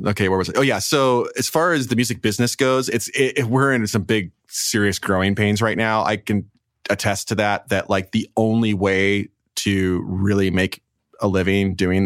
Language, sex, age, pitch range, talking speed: English, male, 30-49, 90-110 Hz, 210 wpm